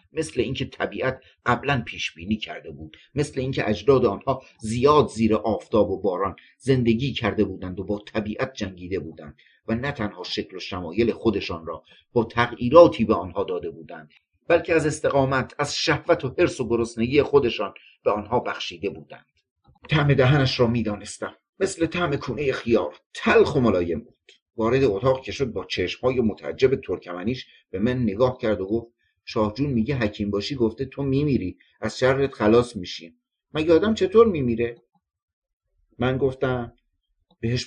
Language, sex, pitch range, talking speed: Persian, male, 105-140 Hz, 150 wpm